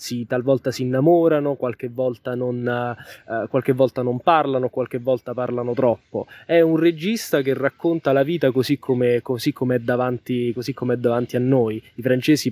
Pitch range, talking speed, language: 125-145 Hz, 160 wpm, Italian